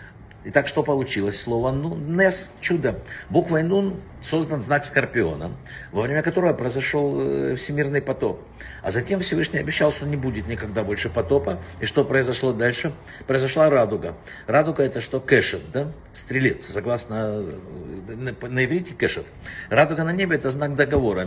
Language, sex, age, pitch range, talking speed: Russian, male, 60-79, 105-150 Hz, 140 wpm